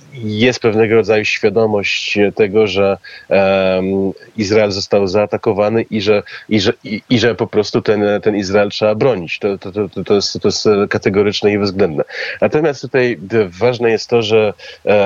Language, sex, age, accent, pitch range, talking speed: Polish, male, 30-49, native, 100-110 Hz, 165 wpm